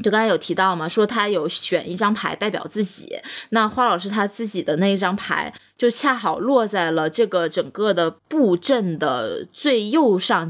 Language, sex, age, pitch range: Chinese, female, 20-39, 175-240 Hz